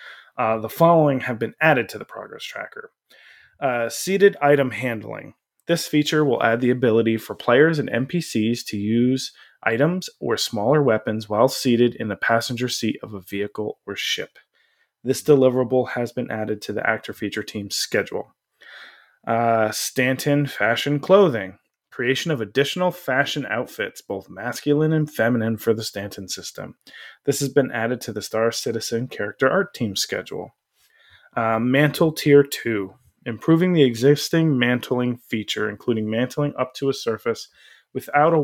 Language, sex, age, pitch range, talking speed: English, male, 20-39, 115-145 Hz, 155 wpm